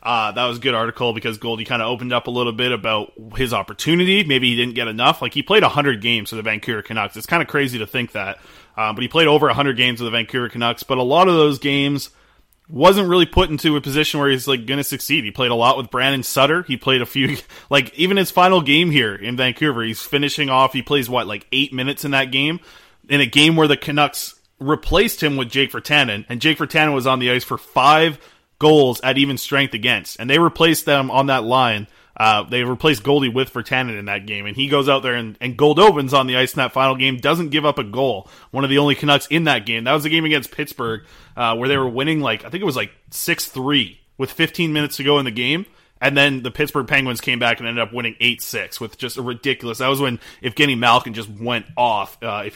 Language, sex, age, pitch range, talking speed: English, male, 20-39, 120-145 Hz, 255 wpm